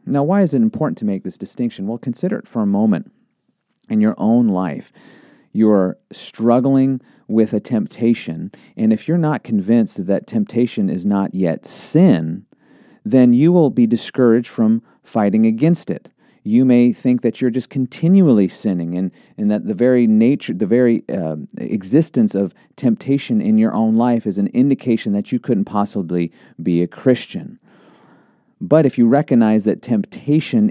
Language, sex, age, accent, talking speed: English, male, 40-59, American, 160 wpm